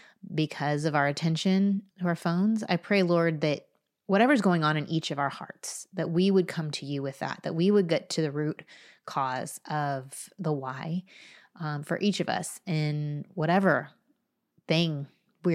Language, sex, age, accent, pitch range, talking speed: English, female, 30-49, American, 150-185 Hz, 180 wpm